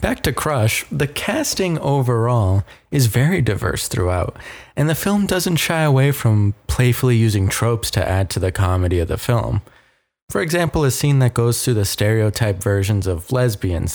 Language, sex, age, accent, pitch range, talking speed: English, male, 20-39, American, 105-150 Hz, 170 wpm